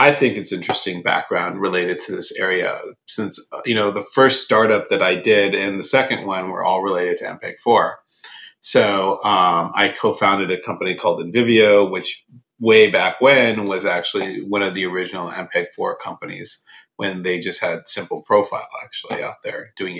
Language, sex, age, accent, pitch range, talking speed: English, male, 40-59, American, 100-135 Hz, 170 wpm